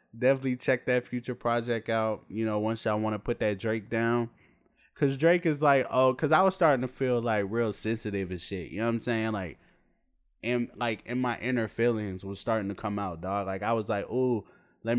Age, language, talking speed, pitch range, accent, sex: 20-39, English, 225 wpm, 100-125 Hz, American, male